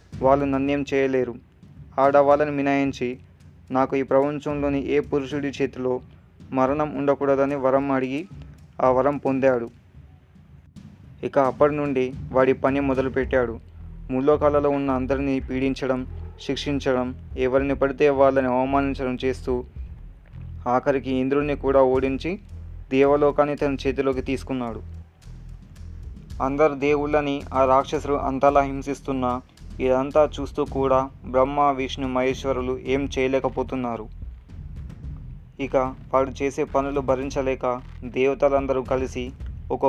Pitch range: 125-140 Hz